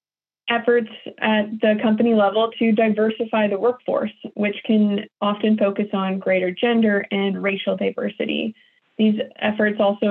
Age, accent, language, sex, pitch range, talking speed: 20-39, American, English, female, 200-225 Hz, 130 wpm